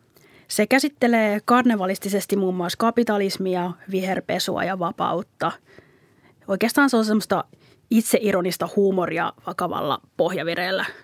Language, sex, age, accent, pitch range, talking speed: Finnish, female, 30-49, native, 185-230 Hz, 90 wpm